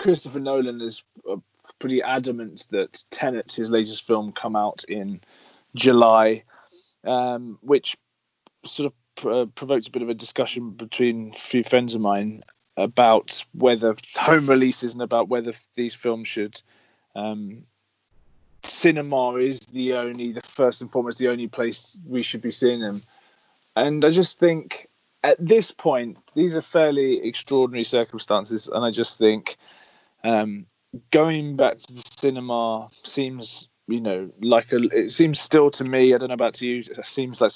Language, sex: English, male